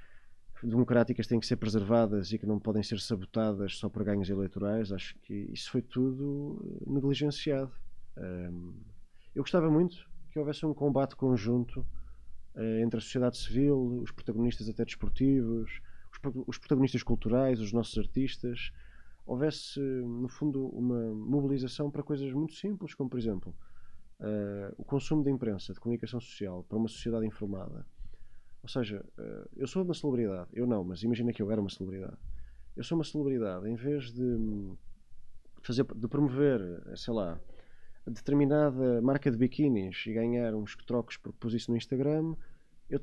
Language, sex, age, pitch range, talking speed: Portuguese, male, 20-39, 110-140 Hz, 150 wpm